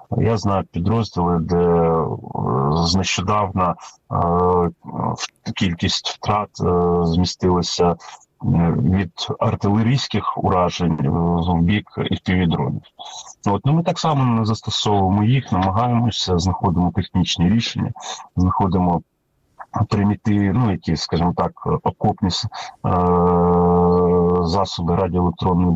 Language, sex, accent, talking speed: Ukrainian, male, native, 90 wpm